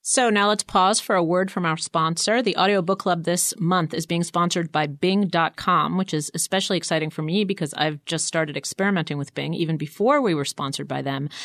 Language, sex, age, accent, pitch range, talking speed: English, female, 30-49, American, 155-190 Hz, 210 wpm